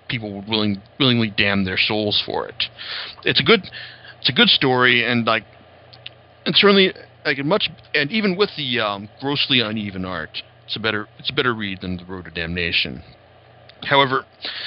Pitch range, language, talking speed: 105-140 Hz, English, 175 wpm